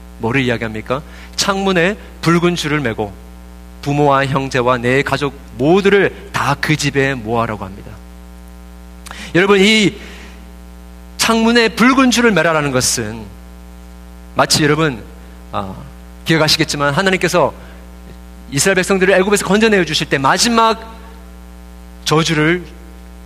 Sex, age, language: male, 40-59, Korean